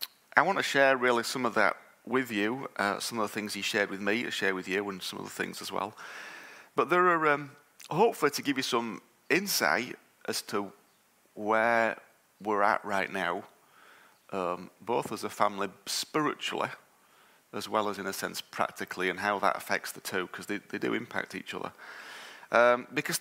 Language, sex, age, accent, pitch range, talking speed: English, male, 30-49, British, 100-120 Hz, 195 wpm